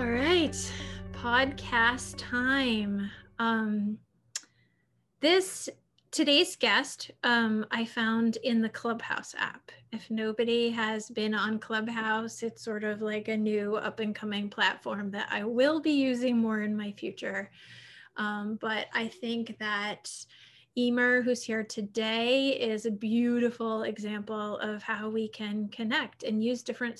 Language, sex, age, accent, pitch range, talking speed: English, female, 30-49, American, 215-245 Hz, 135 wpm